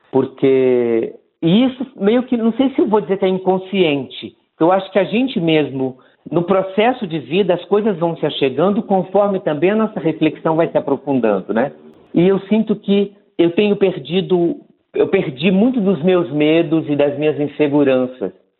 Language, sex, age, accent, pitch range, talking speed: Portuguese, male, 50-69, Brazilian, 145-190 Hz, 175 wpm